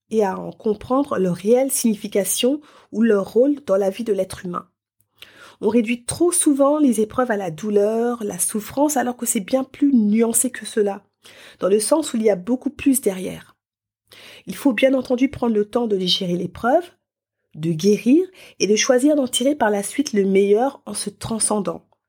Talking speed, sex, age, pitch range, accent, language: 190 wpm, female, 30-49, 205-260 Hz, French, French